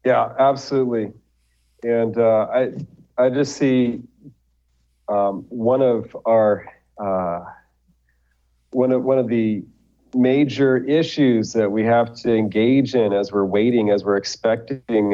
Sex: male